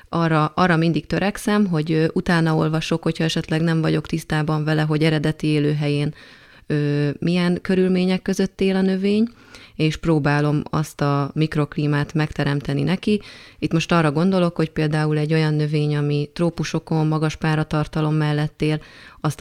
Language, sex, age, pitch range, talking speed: Hungarian, female, 30-49, 150-165 Hz, 135 wpm